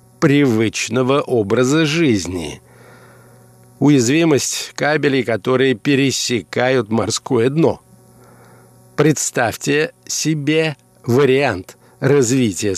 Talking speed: 60 wpm